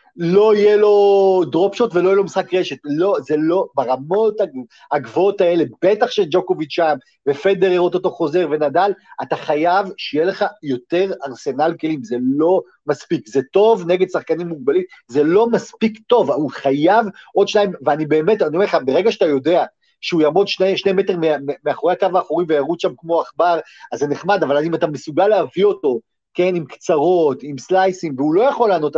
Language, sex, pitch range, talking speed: Hebrew, male, 170-230 Hz, 175 wpm